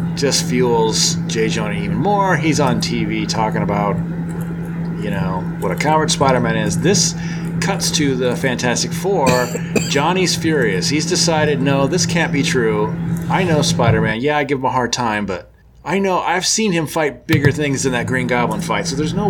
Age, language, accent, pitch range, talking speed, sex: 30-49, English, American, 155-170 Hz, 185 wpm, male